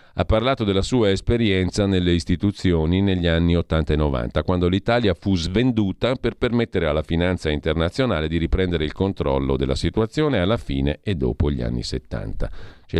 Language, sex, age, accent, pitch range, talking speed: Italian, male, 50-69, native, 80-105 Hz, 160 wpm